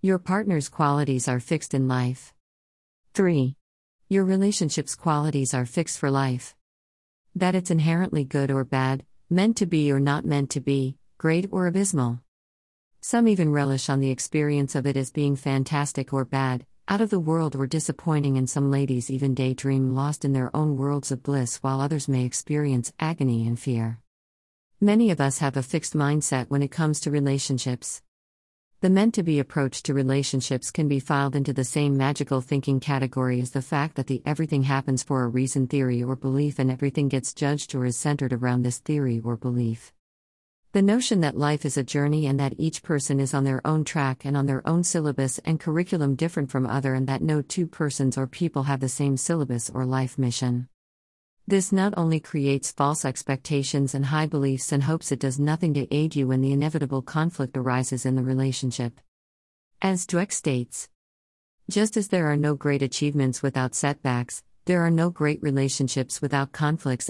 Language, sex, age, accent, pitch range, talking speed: English, female, 50-69, American, 130-150 Hz, 185 wpm